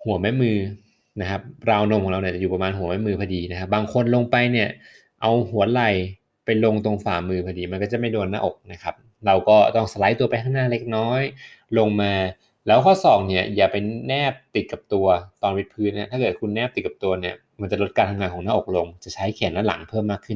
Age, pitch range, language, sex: 20-39, 100-115 Hz, Thai, male